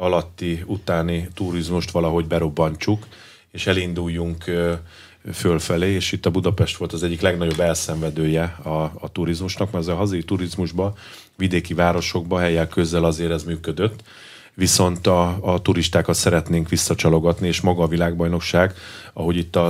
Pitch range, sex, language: 85-95 Hz, male, Hungarian